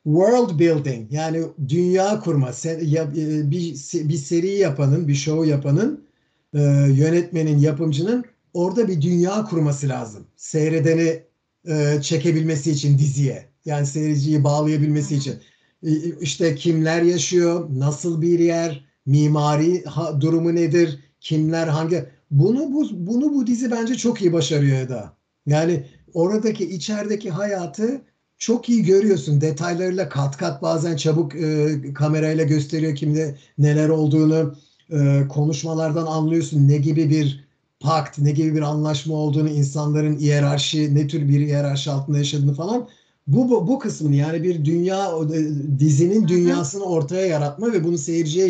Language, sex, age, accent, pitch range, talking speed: Turkish, male, 50-69, native, 150-175 Hz, 125 wpm